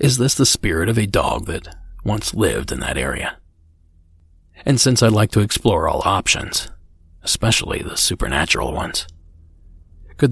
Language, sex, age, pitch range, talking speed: English, male, 40-59, 80-110 Hz, 150 wpm